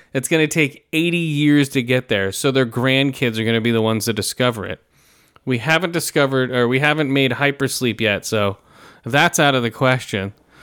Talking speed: 190 wpm